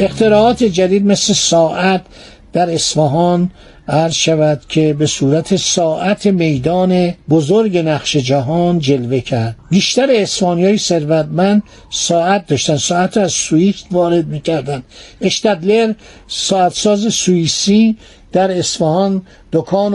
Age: 60-79